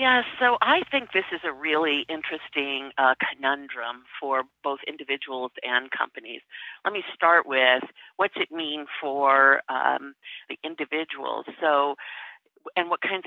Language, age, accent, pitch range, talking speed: English, 50-69, American, 145-210 Hz, 140 wpm